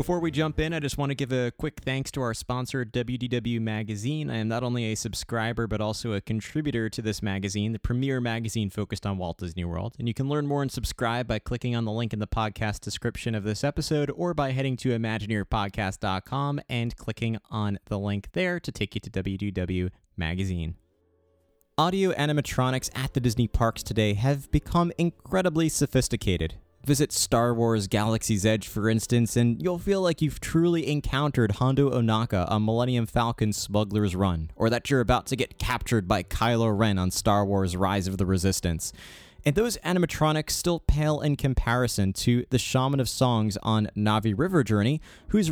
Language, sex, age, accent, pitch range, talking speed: English, male, 20-39, American, 105-140 Hz, 185 wpm